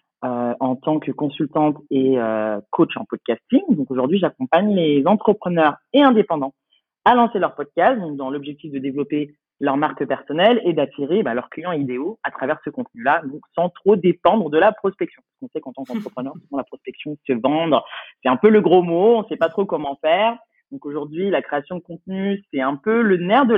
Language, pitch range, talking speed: French, 130-195 Hz, 210 wpm